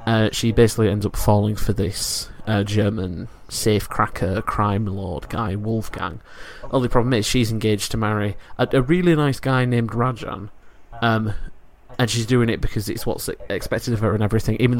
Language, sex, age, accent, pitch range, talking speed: English, male, 20-39, British, 105-115 Hz, 175 wpm